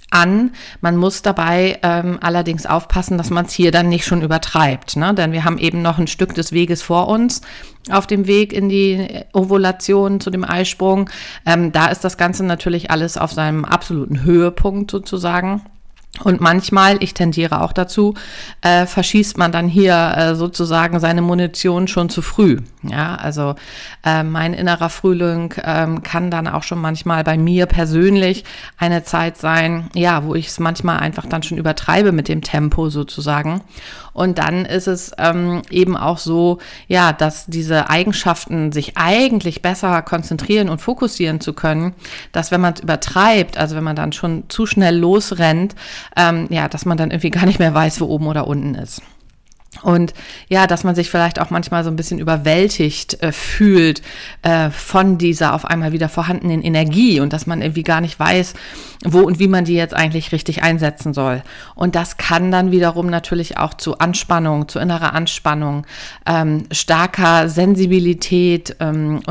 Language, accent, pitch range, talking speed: German, German, 160-185 Hz, 175 wpm